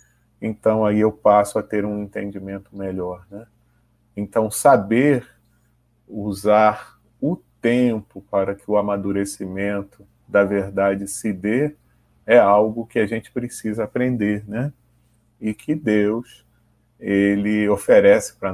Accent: Brazilian